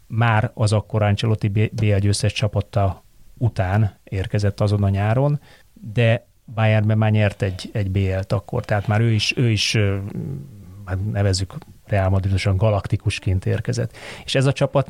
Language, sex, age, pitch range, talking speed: Hungarian, male, 30-49, 100-120 Hz, 140 wpm